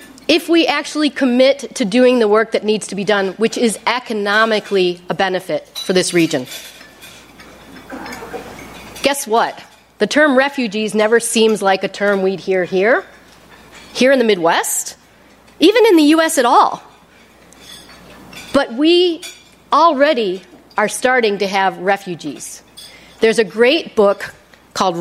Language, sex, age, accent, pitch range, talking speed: English, female, 40-59, American, 180-250 Hz, 135 wpm